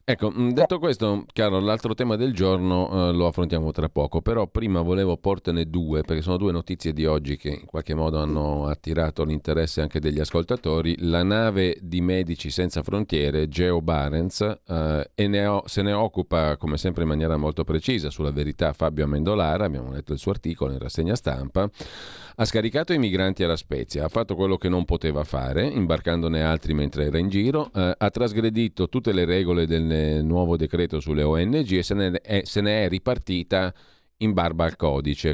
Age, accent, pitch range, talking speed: 40-59, native, 75-100 Hz, 175 wpm